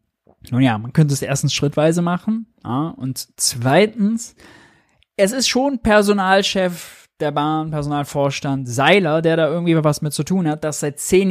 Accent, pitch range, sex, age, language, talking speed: German, 135-175 Hz, male, 20-39, German, 160 wpm